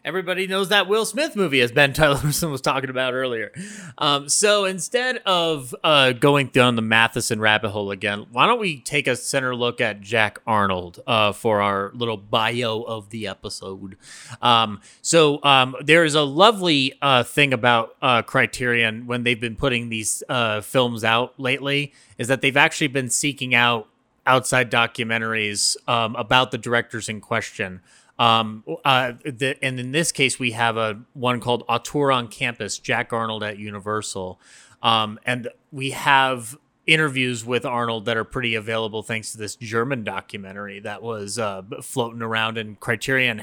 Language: English